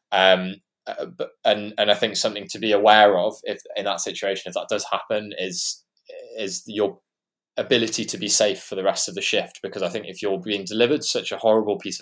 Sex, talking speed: male, 210 wpm